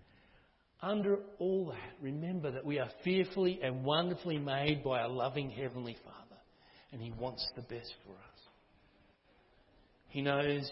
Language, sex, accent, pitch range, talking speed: English, male, Australian, 120-155 Hz, 140 wpm